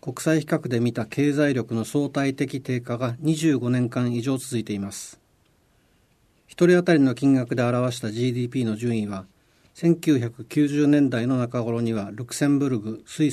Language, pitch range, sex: Japanese, 115-150 Hz, male